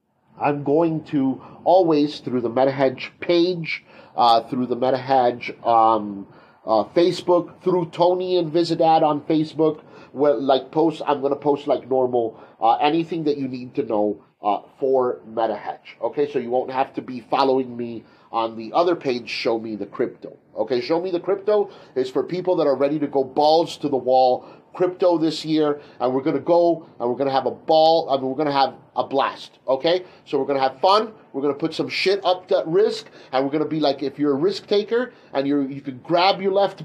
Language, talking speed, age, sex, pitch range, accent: English, 215 wpm, 40-59, male, 135-180 Hz, American